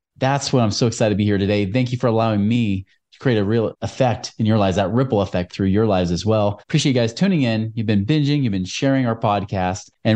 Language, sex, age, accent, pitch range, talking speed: English, male, 30-49, American, 100-135 Hz, 260 wpm